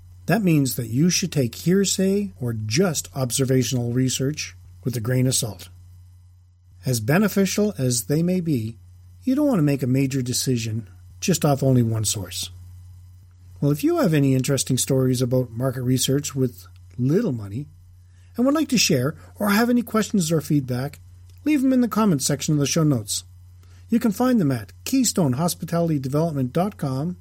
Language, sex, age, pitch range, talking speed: English, male, 40-59, 110-185 Hz, 165 wpm